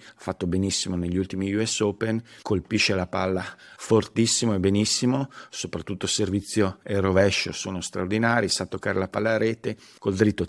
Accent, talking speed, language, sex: native, 155 wpm, Italian, male